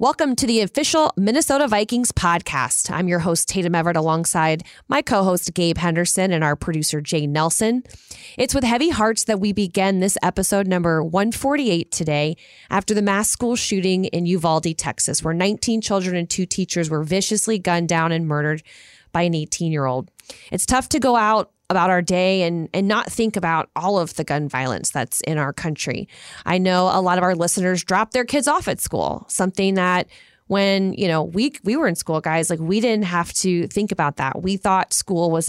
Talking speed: 195 wpm